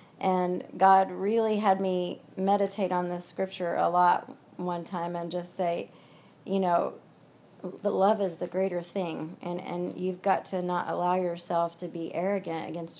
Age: 30-49